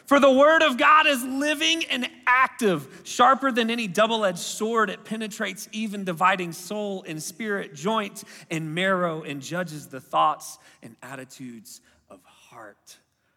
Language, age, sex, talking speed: English, 30-49, male, 150 wpm